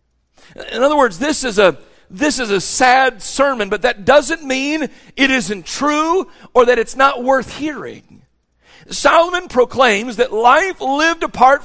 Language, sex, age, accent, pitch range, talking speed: English, male, 50-69, American, 210-275 Hz, 145 wpm